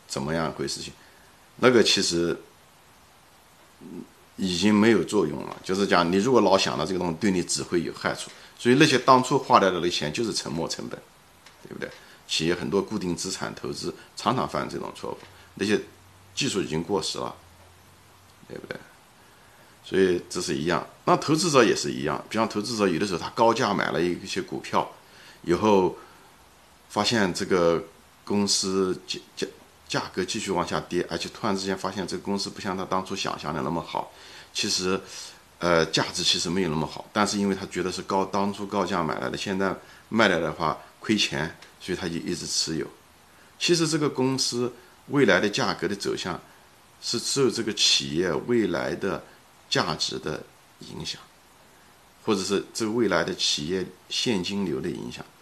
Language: Chinese